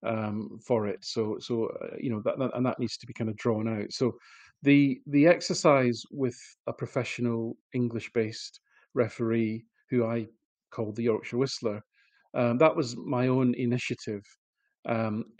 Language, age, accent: English, 40-59, British